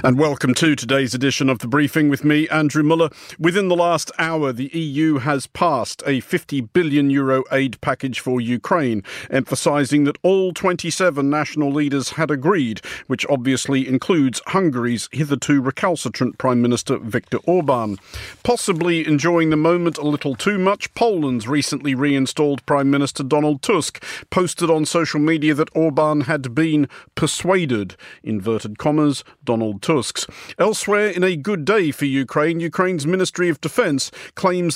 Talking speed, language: 145 wpm, English